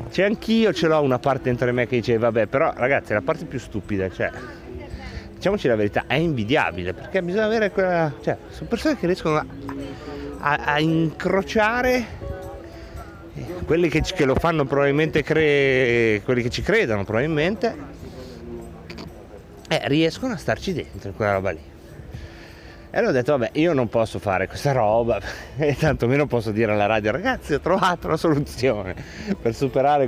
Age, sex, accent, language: 30-49, male, native, Italian